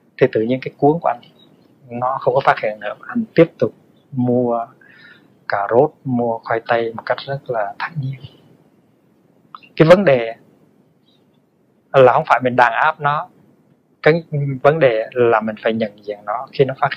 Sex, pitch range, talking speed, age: male, 115-150 Hz, 175 wpm, 20-39